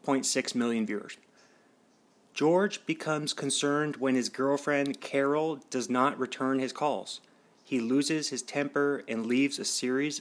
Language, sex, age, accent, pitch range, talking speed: English, male, 30-49, American, 125-145 Hz, 140 wpm